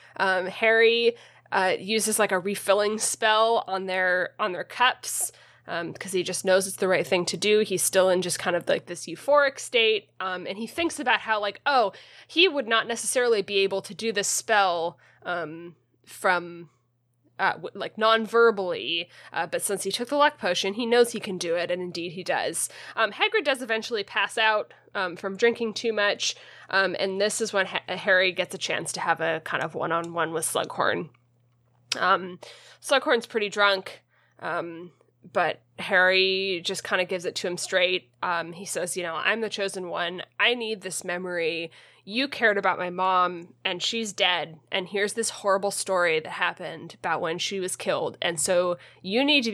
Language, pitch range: English, 175-215 Hz